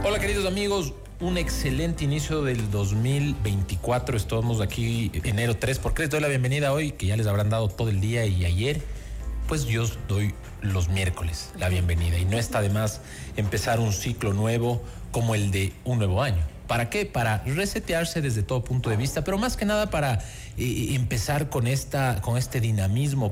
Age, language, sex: 40-59, Spanish, male